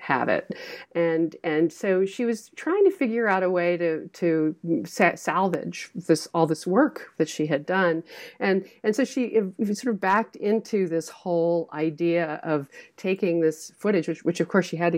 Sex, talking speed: female, 185 wpm